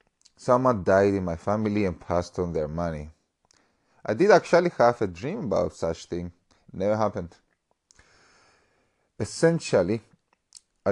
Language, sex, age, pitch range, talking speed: English, male, 30-49, 85-105 Hz, 130 wpm